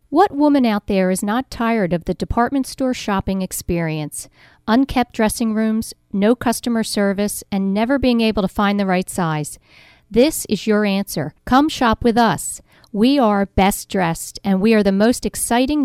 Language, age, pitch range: English, 50-69, 190-235 Hz